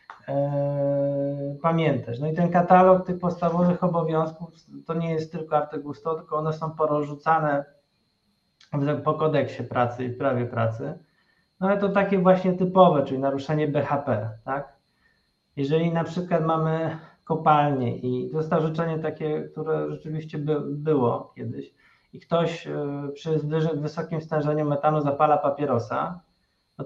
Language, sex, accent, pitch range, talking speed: Polish, male, native, 135-165 Hz, 125 wpm